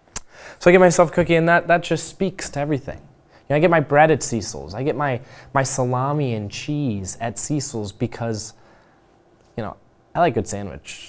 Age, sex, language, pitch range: 10-29, male, English, 100-120 Hz